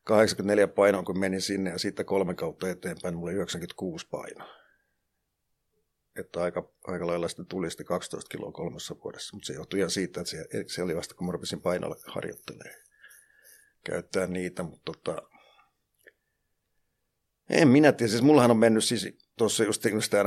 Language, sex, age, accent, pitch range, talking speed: Finnish, male, 50-69, native, 95-125 Hz, 145 wpm